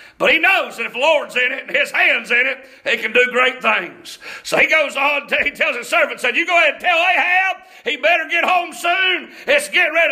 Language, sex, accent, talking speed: English, male, American, 250 wpm